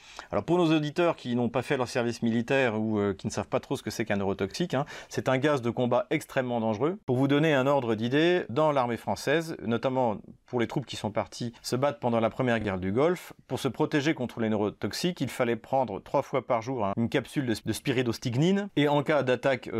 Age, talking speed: 40-59, 235 wpm